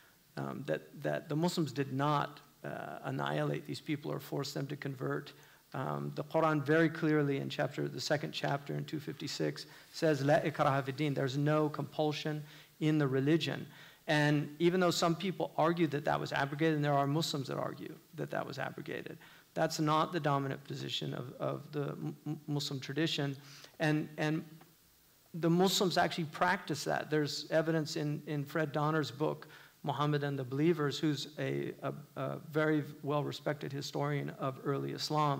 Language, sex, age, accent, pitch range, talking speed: English, male, 50-69, American, 145-165 Hz, 160 wpm